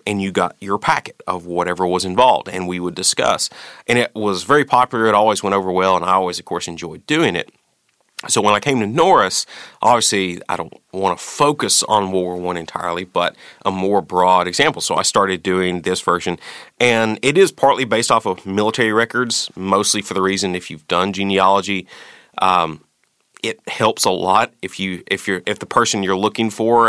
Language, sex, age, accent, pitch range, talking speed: English, male, 30-49, American, 90-100 Hz, 205 wpm